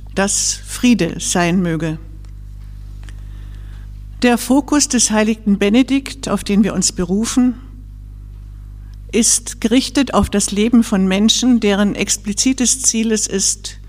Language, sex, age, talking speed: German, female, 50-69, 110 wpm